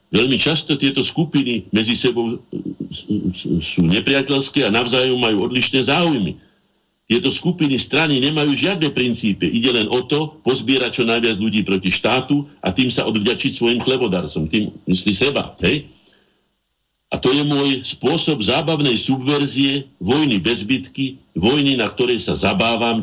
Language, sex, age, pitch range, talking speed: Slovak, male, 60-79, 110-145 Hz, 140 wpm